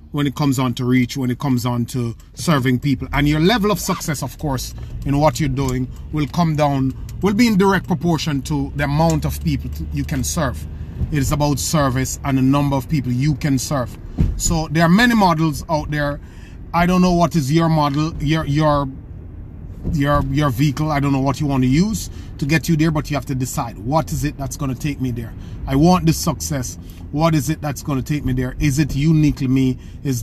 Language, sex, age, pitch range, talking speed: English, male, 30-49, 130-160 Hz, 225 wpm